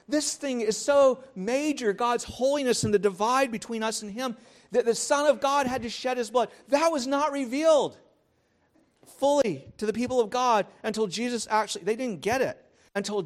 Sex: male